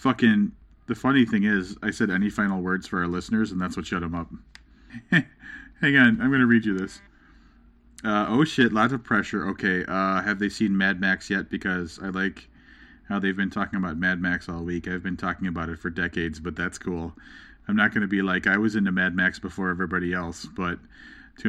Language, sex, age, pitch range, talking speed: English, male, 30-49, 90-110 Hz, 220 wpm